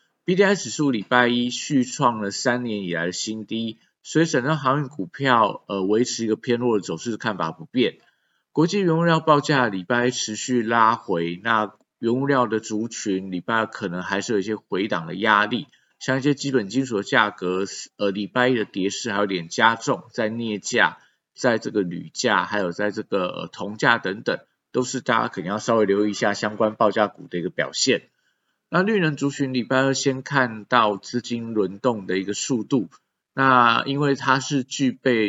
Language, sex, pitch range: Chinese, male, 105-130 Hz